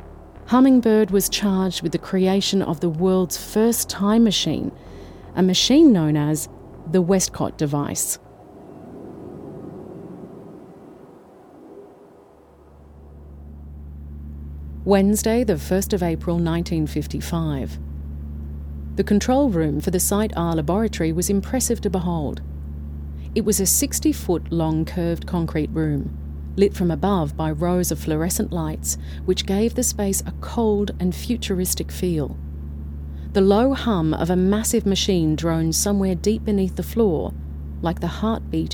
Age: 40-59